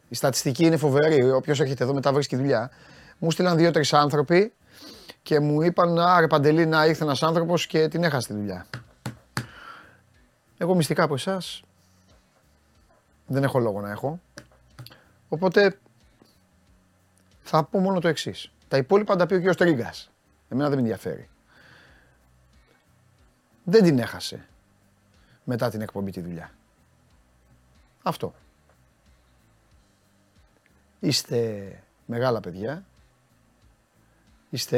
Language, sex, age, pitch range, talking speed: Greek, male, 30-49, 100-150 Hz, 115 wpm